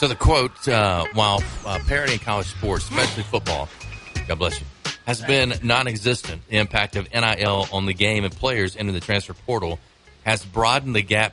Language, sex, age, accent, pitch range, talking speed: English, male, 40-59, American, 90-110 Hz, 190 wpm